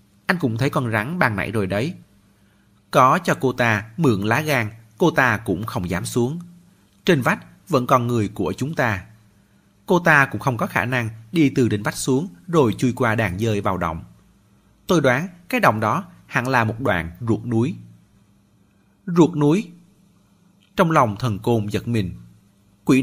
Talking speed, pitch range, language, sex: 180 wpm, 100-145 Hz, Vietnamese, male